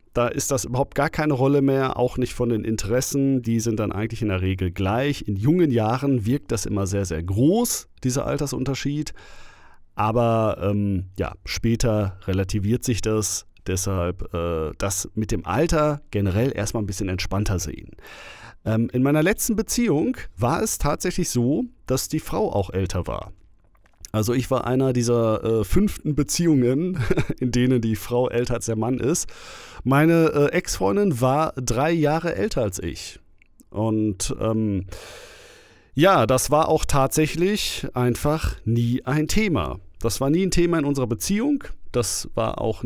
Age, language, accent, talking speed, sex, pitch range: 40-59, German, German, 160 wpm, male, 100-135 Hz